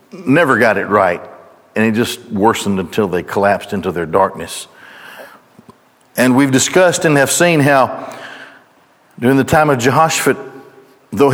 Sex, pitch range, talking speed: male, 130-165 Hz, 145 wpm